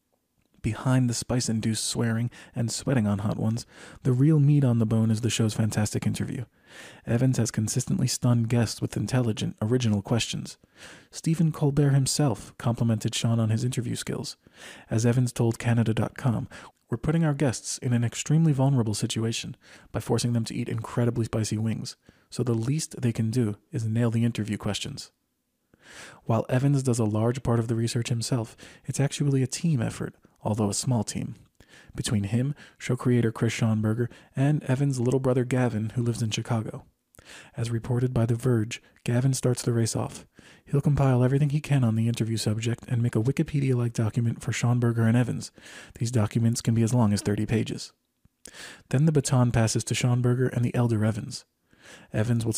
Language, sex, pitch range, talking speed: English, male, 115-130 Hz, 175 wpm